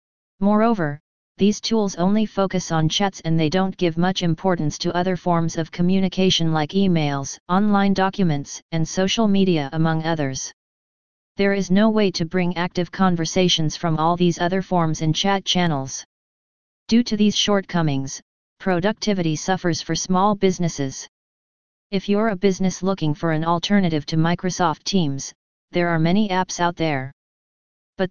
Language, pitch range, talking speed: English, 165-195 Hz, 150 wpm